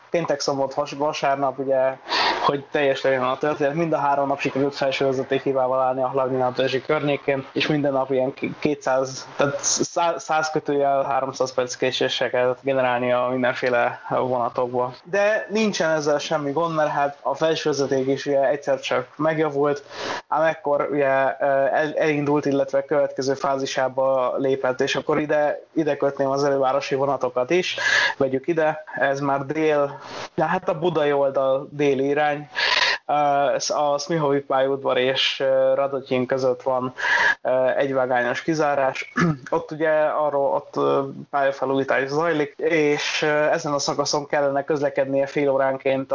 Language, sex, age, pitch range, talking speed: Hungarian, male, 20-39, 135-150 Hz, 130 wpm